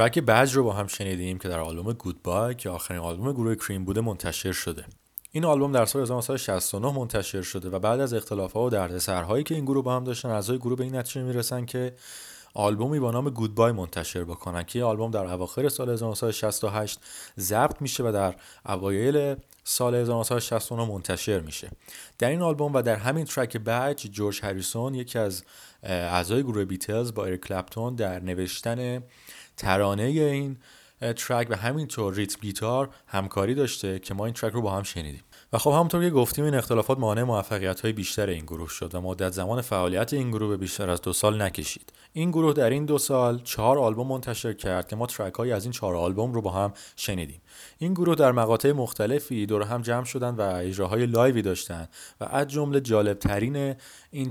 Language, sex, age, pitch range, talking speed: Persian, male, 30-49, 95-125 Hz, 185 wpm